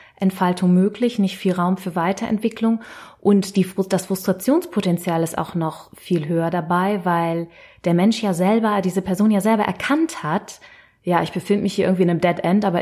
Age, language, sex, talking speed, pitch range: 20-39, German, female, 185 wpm, 170-200 Hz